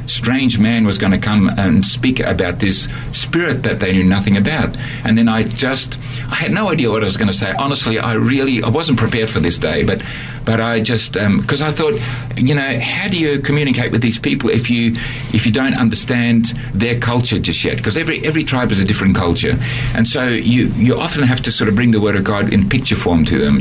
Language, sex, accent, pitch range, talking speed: English, male, Australian, 110-130 Hz, 235 wpm